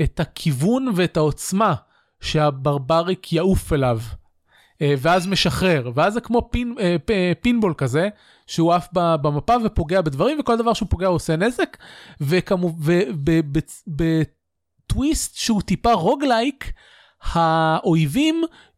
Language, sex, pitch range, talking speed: Hebrew, male, 145-205 Hz, 130 wpm